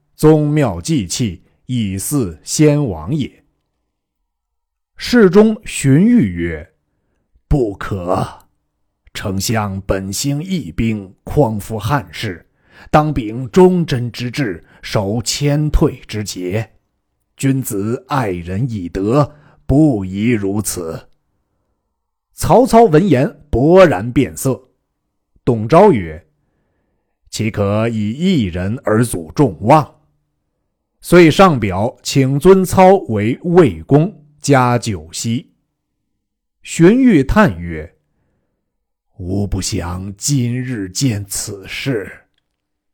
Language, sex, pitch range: Chinese, male, 100-160 Hz